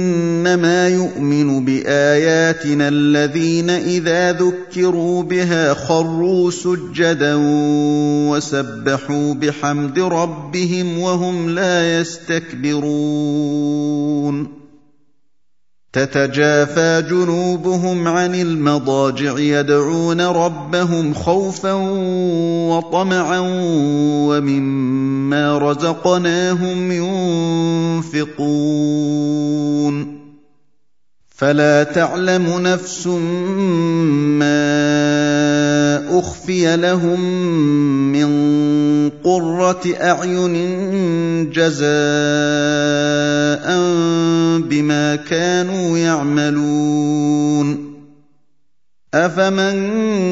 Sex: male